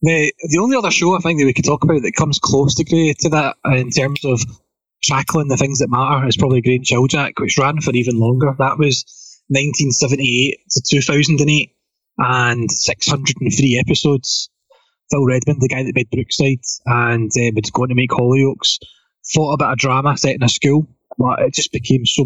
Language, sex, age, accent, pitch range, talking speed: English, male, 20-39, British, 125-145 Hz, 190 wpm